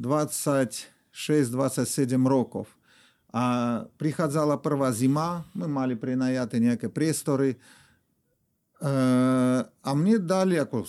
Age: 50-69